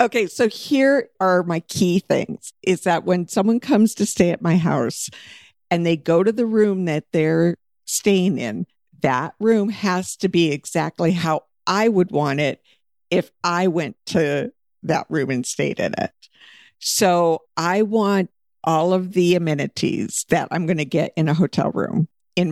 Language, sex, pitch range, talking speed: English, female, 160-200 Hz, 175 wpm